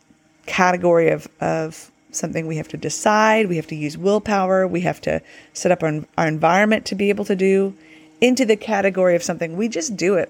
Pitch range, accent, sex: 155-205 Hz, American, female